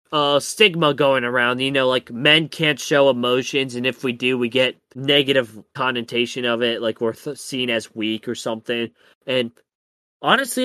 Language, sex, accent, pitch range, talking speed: English, male, American, 115-170 Hz, 170 wpm